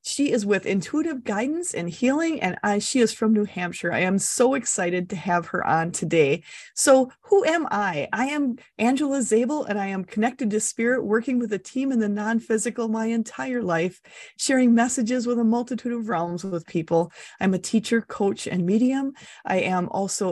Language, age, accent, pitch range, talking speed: English, 30-49, American, 185-255 Hz, 190 wpm